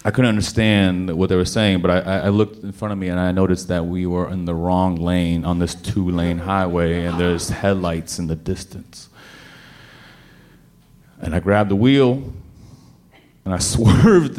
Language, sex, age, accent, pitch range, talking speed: English, male, 30-49, American, 90-115 Hz, 180 wpm